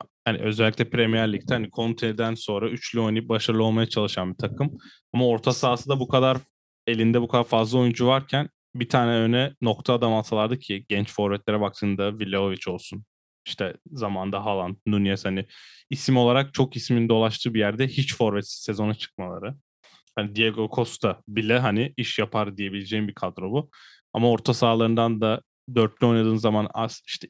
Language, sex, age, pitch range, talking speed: Turkish, male, 10-29, 105-120 Hz, 165 wpm